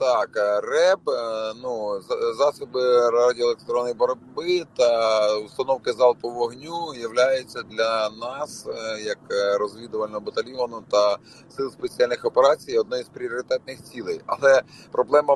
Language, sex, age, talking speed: English, male, 30-49, 100 wpm